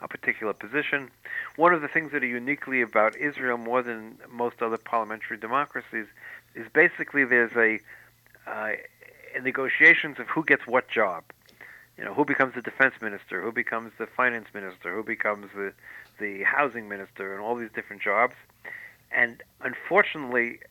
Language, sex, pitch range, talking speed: English, male, 110-130 Hz, 160 wpm